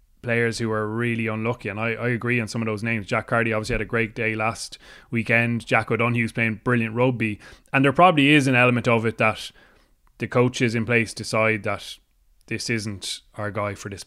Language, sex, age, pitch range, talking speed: English, male, 20-39, 110-120 Hz, 210 wpm